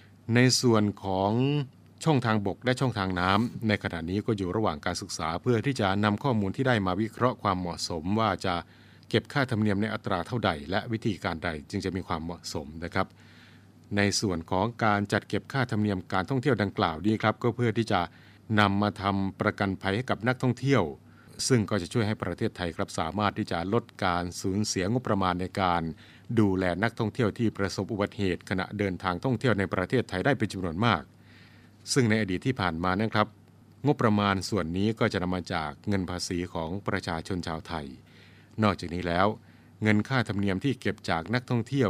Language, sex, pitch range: Thai, male, 90-115 Hz